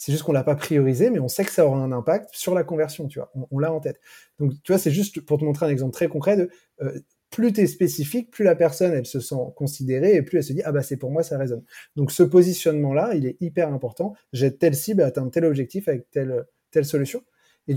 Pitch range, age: 140-180 Hz, 20-39